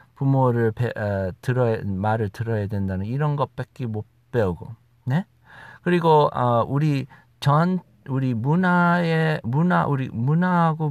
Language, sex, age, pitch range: Korean, male, 50-69, 125-175 Hz